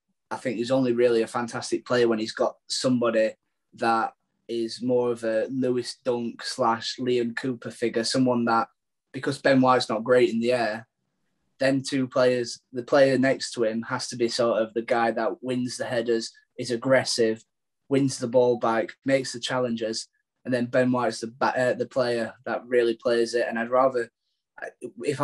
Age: 10-29